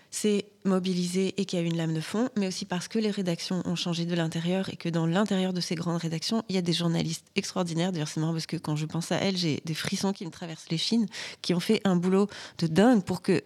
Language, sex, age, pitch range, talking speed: French, female, 30-49, 165-195 Hz, 270 wpm